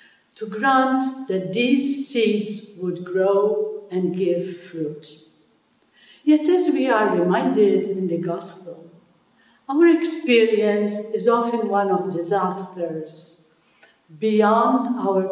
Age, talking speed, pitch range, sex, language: 60-79, 105 wpm, 185-225 Hz, female, English